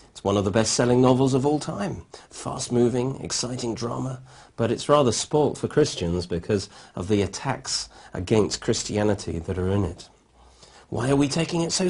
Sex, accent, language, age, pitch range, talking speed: male, British, English, 40-59, 100-140 Hz, 165 wpm